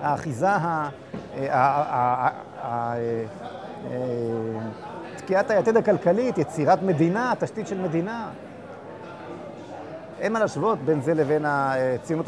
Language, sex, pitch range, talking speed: Hebrew, male, 135-200 Hz, 80 wpm